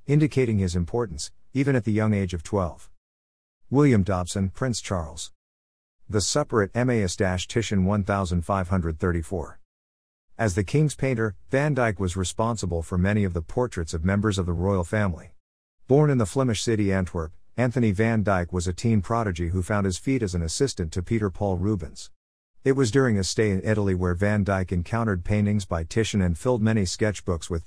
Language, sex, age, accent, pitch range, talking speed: English, male, 50-69, American, 90-110 Hz, 175 wpm